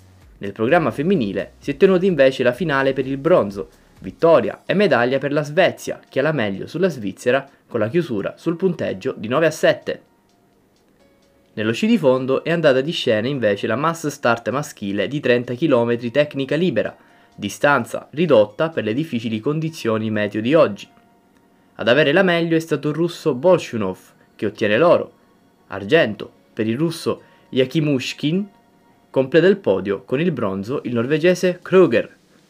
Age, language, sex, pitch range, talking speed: 20-39, Italian, male, 110-170 Hz, 160 wpm